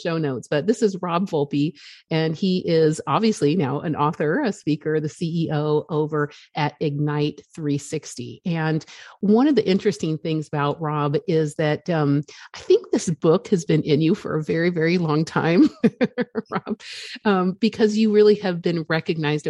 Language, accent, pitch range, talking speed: English, American, 155-195 Hz, 170 wpm